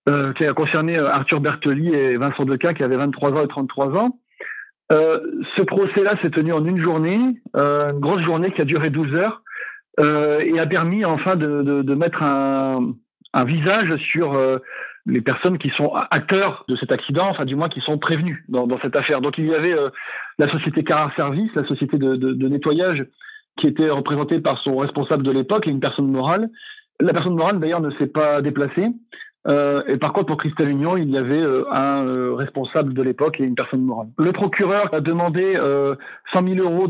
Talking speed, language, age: 210 wpm, French, 40-59